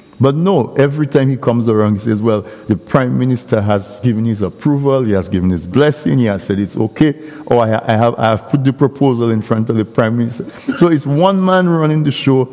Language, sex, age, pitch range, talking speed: English, male, 50-69, 115-150 Hz, 235 wpm